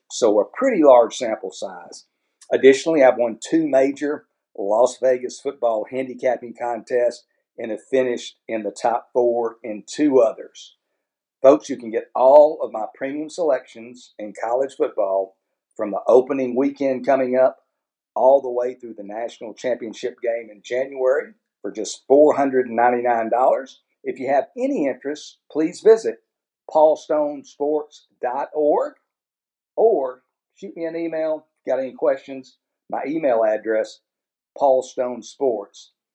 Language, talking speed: English, 130 wpm